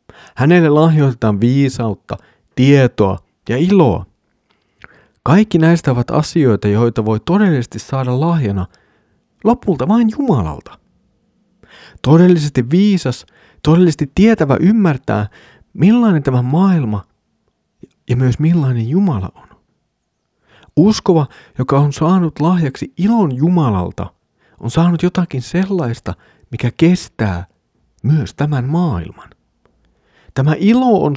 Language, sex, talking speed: Finnish, male, 95 wpm